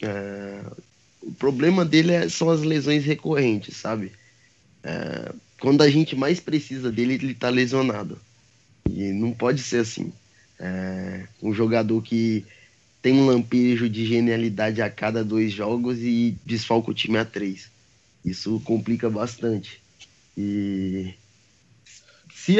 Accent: Brazilian